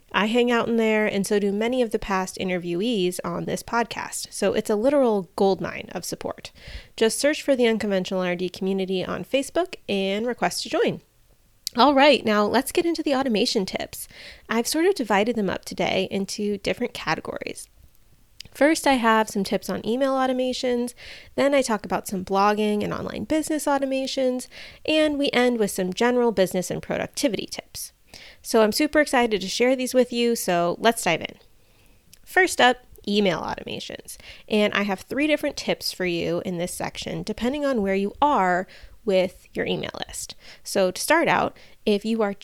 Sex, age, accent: female, 20-39, American